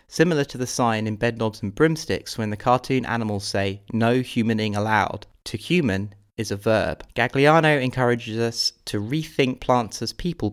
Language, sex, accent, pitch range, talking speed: English, male, British, 105-130 Hz, 165 wpm